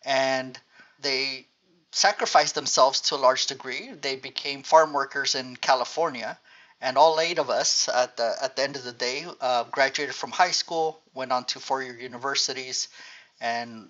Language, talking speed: English, 160 wpm